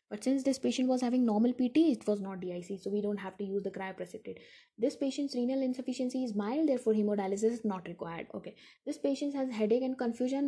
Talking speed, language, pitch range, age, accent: 220 wpm, English, 210-250 Hz, 20-39, Indian